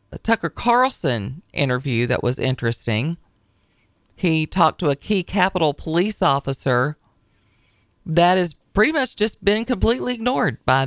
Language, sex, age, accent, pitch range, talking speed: English, female, 40-59, American, 130-175 Hz, 125 wpm